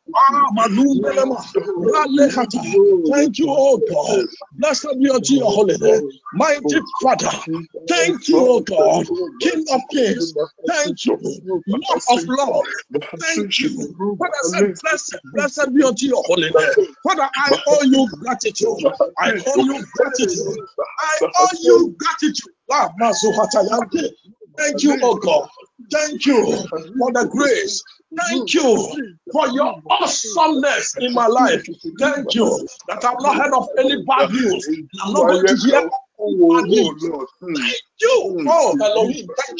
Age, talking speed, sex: 60-79, 135 wpm, male